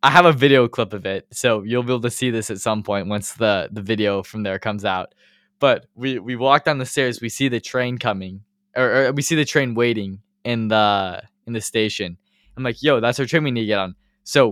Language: English